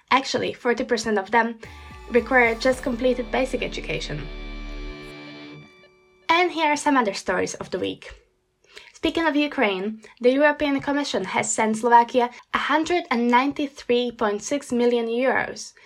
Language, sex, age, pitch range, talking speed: Slovak, female, 10-29, 230-285 Hz, 115 wpm